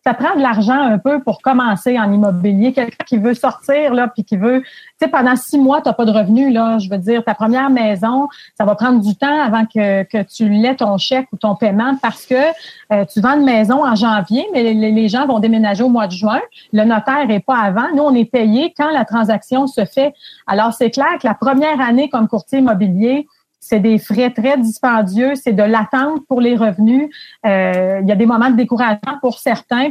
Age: 30-49